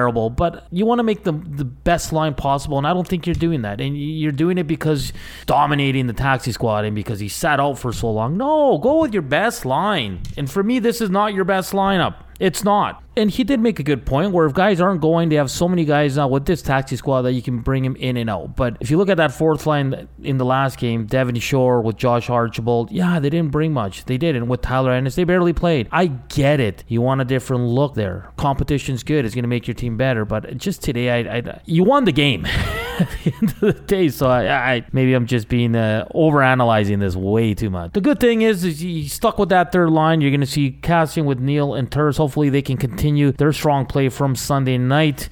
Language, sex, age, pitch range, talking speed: English, male, 30-49, 125-160 Hz, 245 wpm